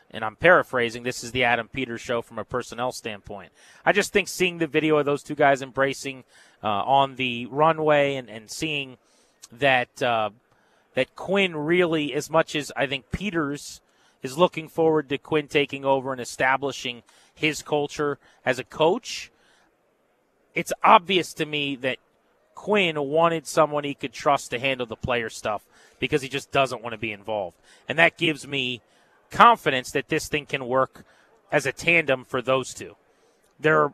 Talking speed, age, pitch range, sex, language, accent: 170 wpm, 30-49, 125-155 Hz, male, English, American